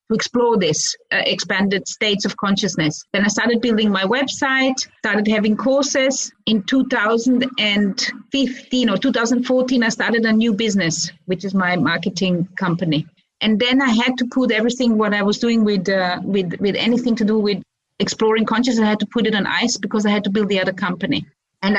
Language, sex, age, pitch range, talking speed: English, female, 30-49, 195-240 Hz, 185 wpm